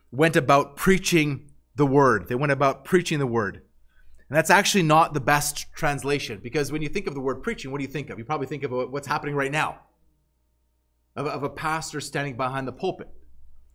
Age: 30-49